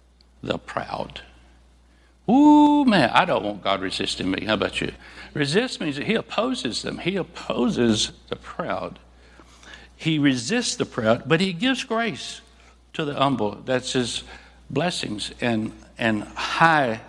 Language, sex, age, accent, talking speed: English, male, 60-79, American, 140 wpm